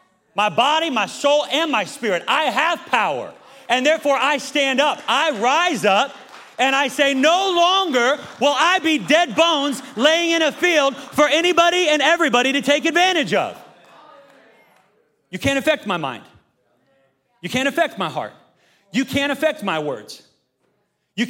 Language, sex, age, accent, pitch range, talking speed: English, male, 30-49, American, 190-280 Hz, 160 wpm